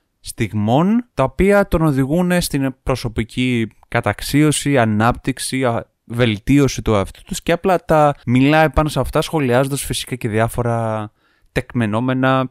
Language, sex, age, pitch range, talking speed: Greek, male, 20-39, 110-150 Hz, 120 wpm